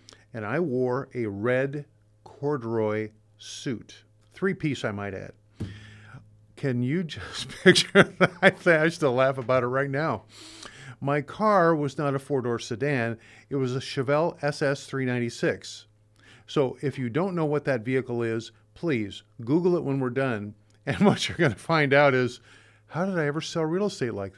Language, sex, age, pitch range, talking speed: English, male, 50-69, 110-145 Hz, 160 wpm